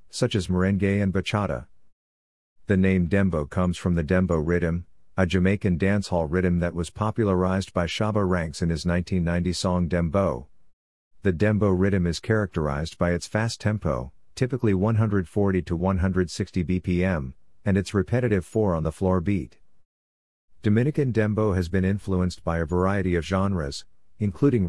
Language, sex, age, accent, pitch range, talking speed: English, male, 50-69, American, 85-105 Hz, 150 wpm